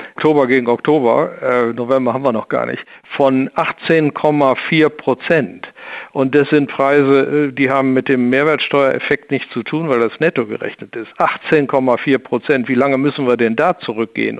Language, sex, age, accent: German, male, 60-79, German